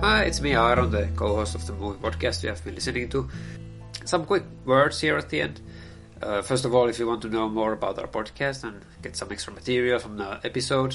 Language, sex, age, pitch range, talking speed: English, male, 30-49, 105-125 Hz, 235 wpm